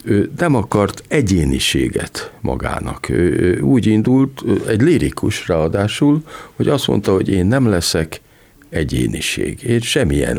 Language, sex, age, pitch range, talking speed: Hungarian, male, 50-69, 75-95 Hz, 120 wpm